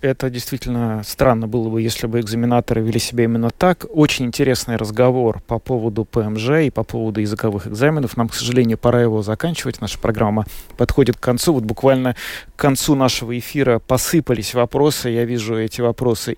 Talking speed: 170 wpm